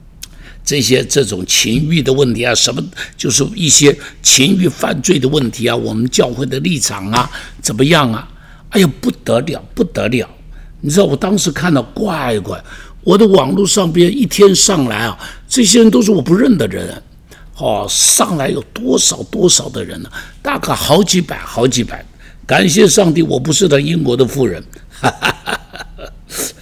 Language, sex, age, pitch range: Chinese, male, 60-79, 120-185 Hz